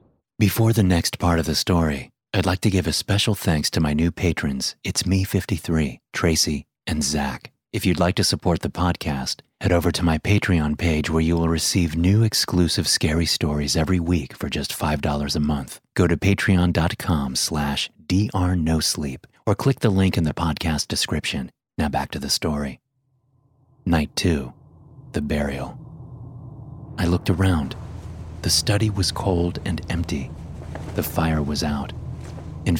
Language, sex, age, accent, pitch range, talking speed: English, male, 30-49, American, 80-110 Hz, 160 wpm